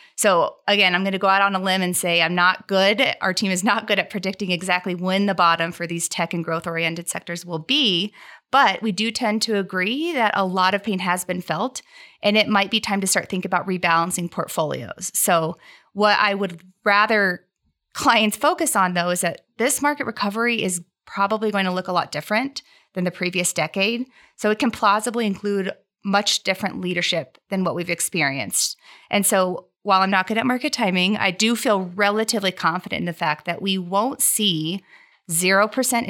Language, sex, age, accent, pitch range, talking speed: English, female, 30-49, American, 180-220 Hz, 200 wpm